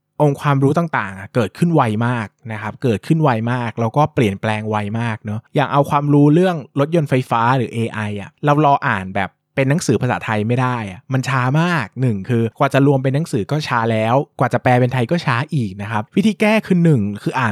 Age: 20-39